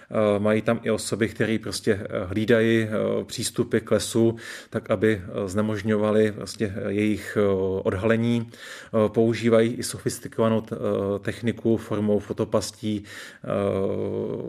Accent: native